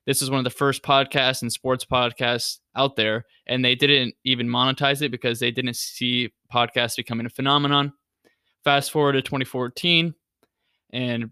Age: 20-39